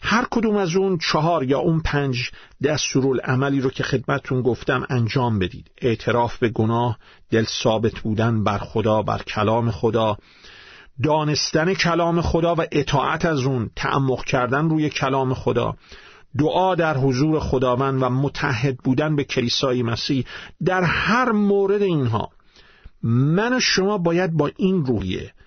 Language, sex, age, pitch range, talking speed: Persian, male, 50-69, 115-155 Hz, 140 wpm